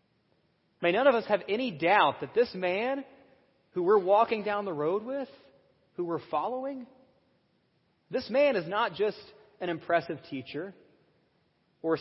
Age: 30-49